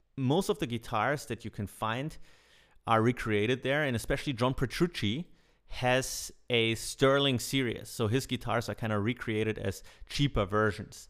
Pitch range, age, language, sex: 105-125 Hz, 30-49, English, male